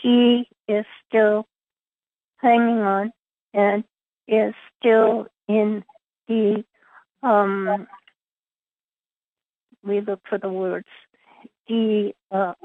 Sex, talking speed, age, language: female, 85 wpm, 50-69, English